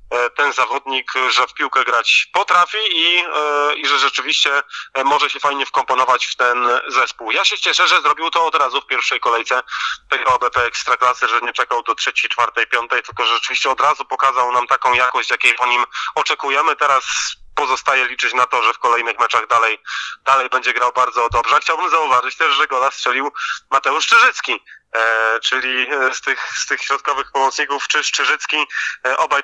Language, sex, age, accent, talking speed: Polish, male, 30-49, native, 175 wpm